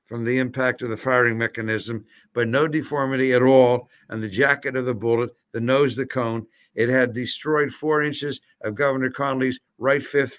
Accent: American